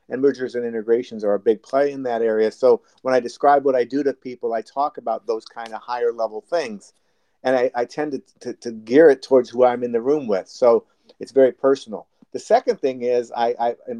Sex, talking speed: male, 240 wpm